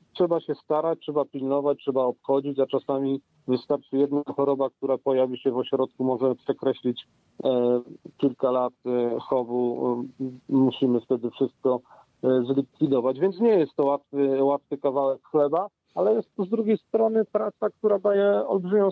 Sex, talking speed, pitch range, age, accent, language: male, 150 wpm, 135-180 Hz, 40-59, native, Polish